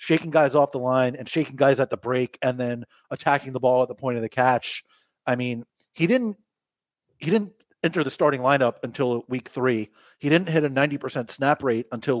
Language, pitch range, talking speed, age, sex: English, 125-140 Hz, 210 wpm, 30-49, male